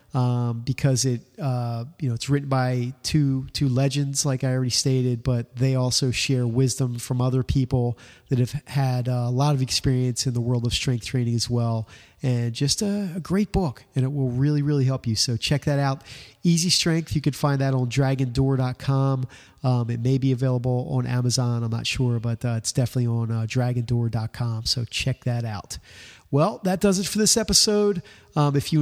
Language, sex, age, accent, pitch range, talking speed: English, male, 30-49, American, 120-145 Hz, 200 wpm